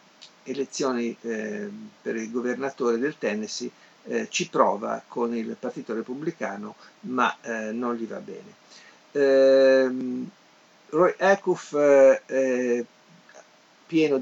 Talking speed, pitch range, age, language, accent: 115 wpm, 125-160 Hz, 50-69, Italian, native